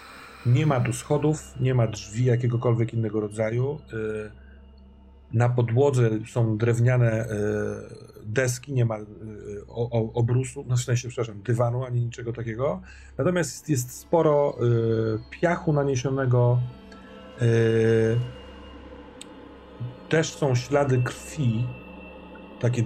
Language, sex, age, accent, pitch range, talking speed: Polish, male, 40-59, native, 105-130 Hz, 100 wpm